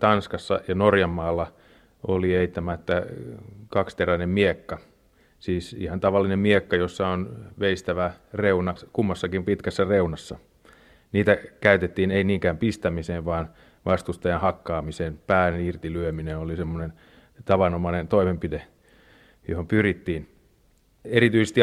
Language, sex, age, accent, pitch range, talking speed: Finnish, male, 30-49, native, 85-105 Hz, 100 wpm